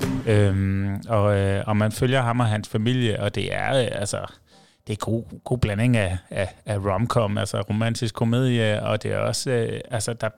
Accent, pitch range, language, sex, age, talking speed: native, 105-120 Hz, Danish, male, 30-49, 160 wpm